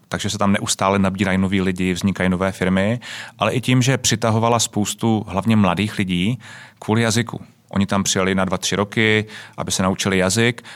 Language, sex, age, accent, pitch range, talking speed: Czech, male, 30-49, native, 95-105 Hz, 175 wpm